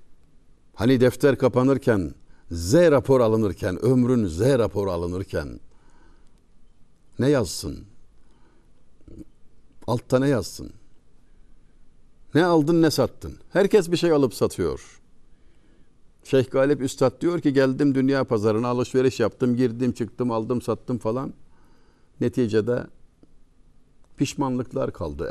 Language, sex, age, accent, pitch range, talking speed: Turkish, male, 60-79, native, 90-130 Hz, 100 wpm